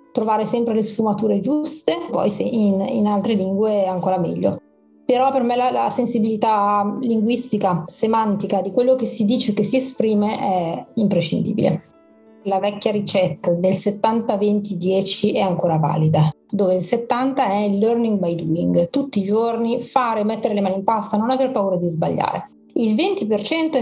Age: 30-49